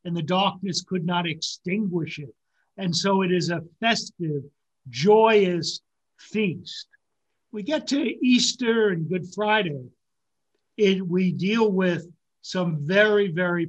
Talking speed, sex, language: 125 wpm, male, English